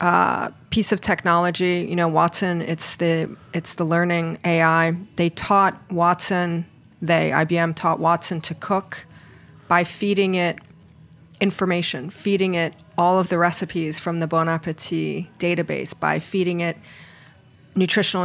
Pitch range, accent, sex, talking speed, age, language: 165-190 Hz, American, female, 130 wpm, 40-59, English